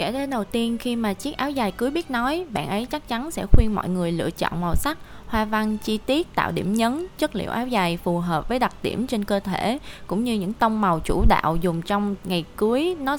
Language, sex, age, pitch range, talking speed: Vietnamese, female, 20-39, 190-245 Hz, 250 wpm